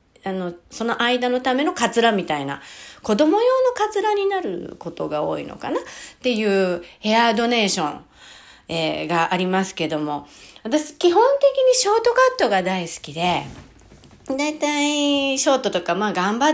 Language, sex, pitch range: Japanese, female, 165-265 Hz